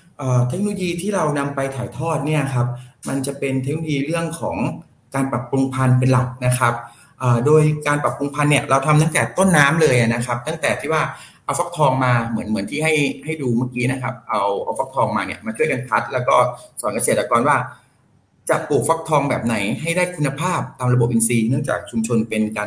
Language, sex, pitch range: Thai, male, 120-150 Hz